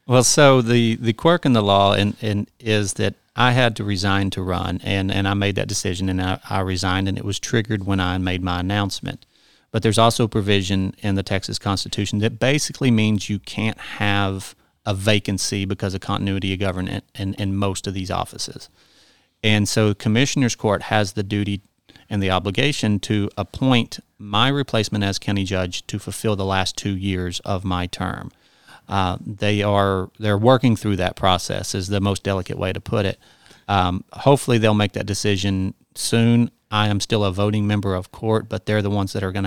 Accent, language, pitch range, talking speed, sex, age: American, English, 95-110 Hz, 200 wpm, male, 40-59